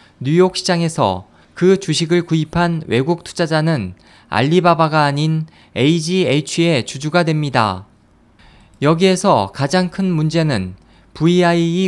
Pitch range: 130-175 Hz